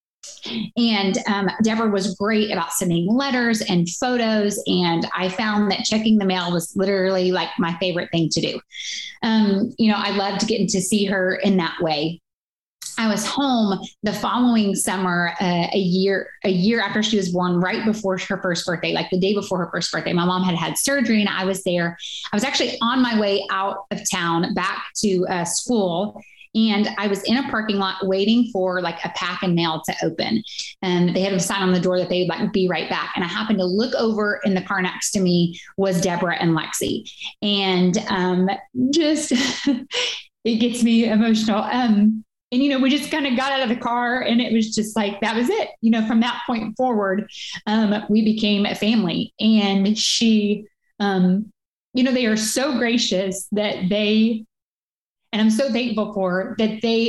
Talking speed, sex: 200 wpm, female